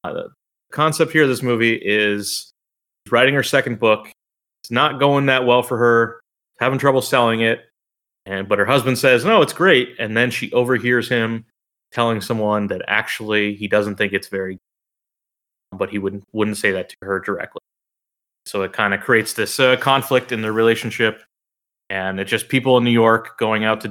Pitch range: 105-130 Hz